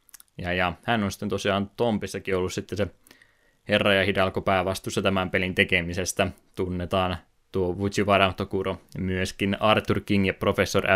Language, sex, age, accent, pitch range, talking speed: Finnish, male, 20-39, native, 95-100 Hz, 135 wpm